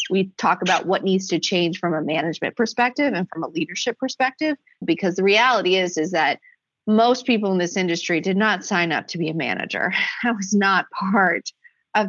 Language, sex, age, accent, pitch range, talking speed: English, female, 30-49, American, 170-230 Hz, 200 wpm